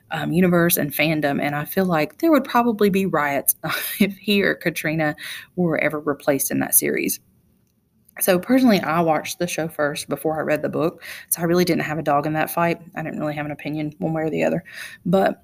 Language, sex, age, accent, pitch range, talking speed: English, female, 30-49, American, 155-185 Hz, 220 wpm